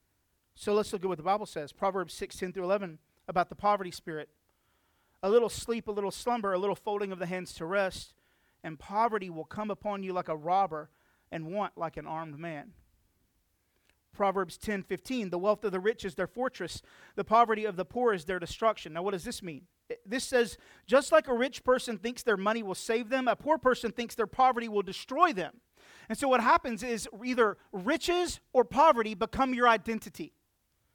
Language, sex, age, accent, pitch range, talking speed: English, male, 40-59, American, 185-250 Hz, 200 wpm